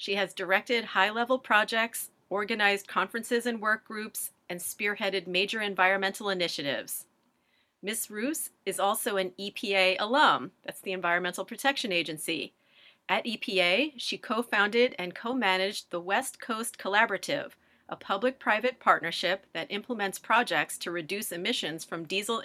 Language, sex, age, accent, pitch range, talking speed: English, female, 40-59, American, 180-225 Hz, 130 wpm